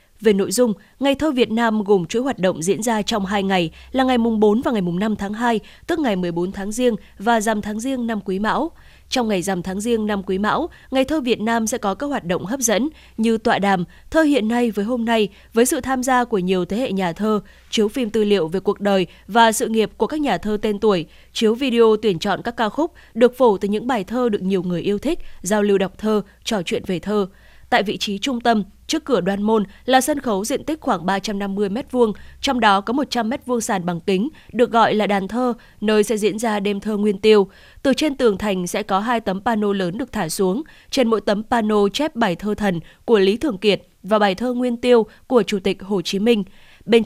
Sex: female